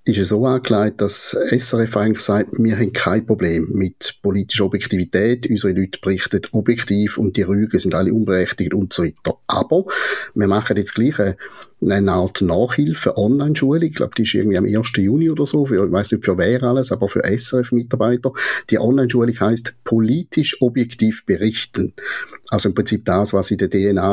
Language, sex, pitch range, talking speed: German, male, 100-115 Hz, 175 wpm